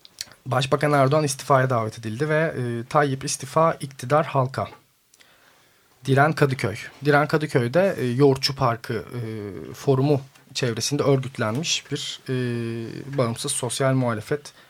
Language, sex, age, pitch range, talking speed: Turkish, male, 40-59, 125-145 Hz, 110 wpm